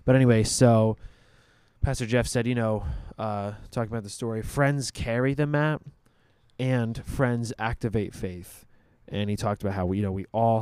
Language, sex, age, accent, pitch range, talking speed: English, male, 20-39, American, 100-125 Hz, 175 wpm